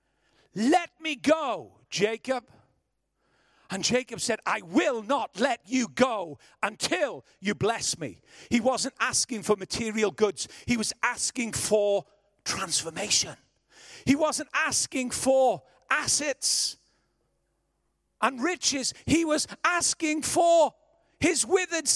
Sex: male